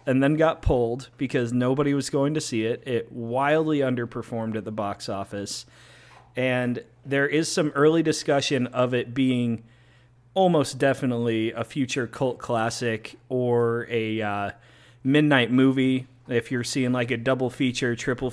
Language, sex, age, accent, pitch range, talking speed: English, male, 30-49, American, 120-140 Hz, 150 wpm